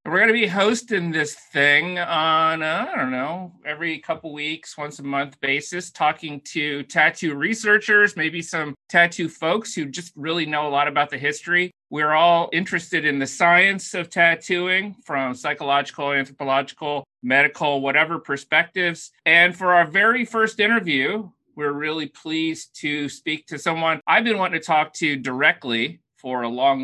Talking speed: 160 wpm